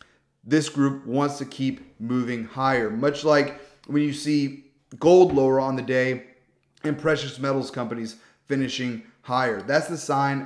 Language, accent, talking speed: English, American, 150 wpm